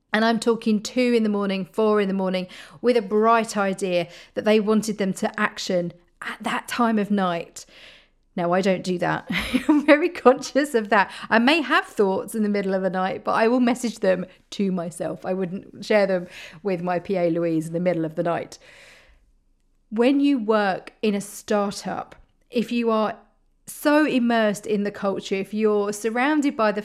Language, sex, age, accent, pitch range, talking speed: English, female, 40-59, British, 190-240 Hz, 190 wpm